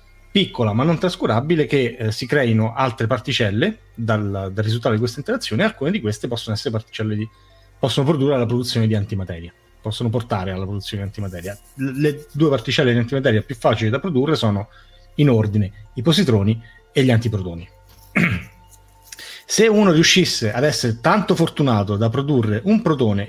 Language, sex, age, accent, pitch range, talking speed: Italian, male, 30-49, native, 105-140 Hz, 165 wpm